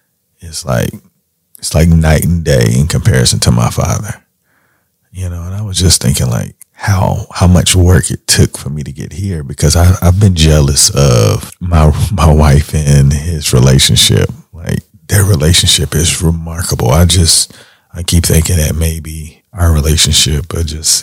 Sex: male